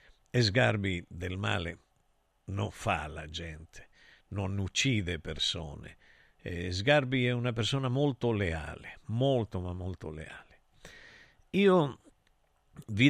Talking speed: 100 wpm